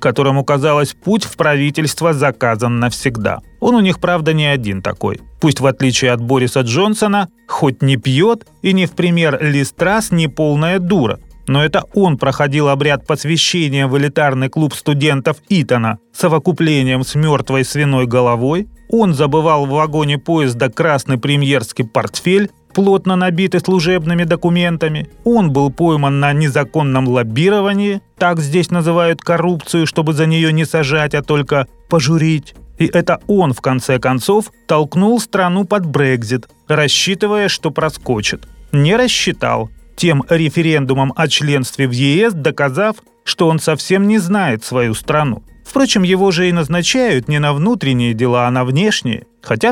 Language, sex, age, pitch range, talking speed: Russian, male, 30-49, 135-180 Hz, 145 wpm